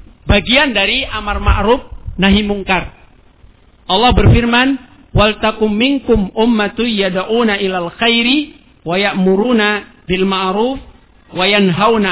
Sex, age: male, 50-69